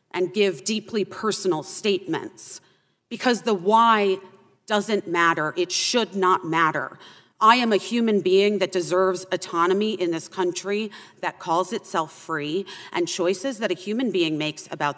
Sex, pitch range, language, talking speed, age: female, 165-210 Hz, English, 150 wpm, 40-59